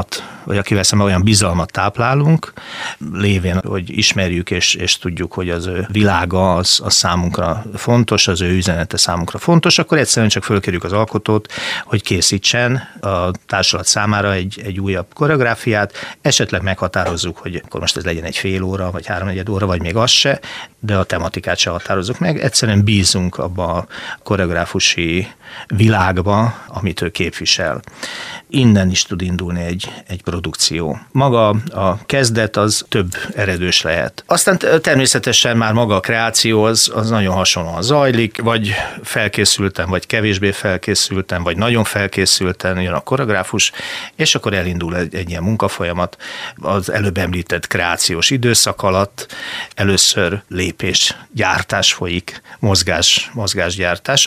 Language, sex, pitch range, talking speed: Hungarian, male, 90-110 Hz, 140 wpm